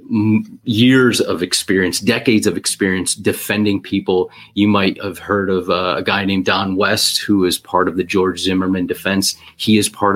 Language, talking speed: English, 175 wpm